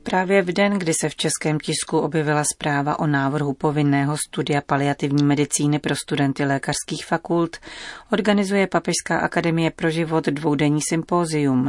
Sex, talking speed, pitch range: female, 140 wpm, 140-170 Hz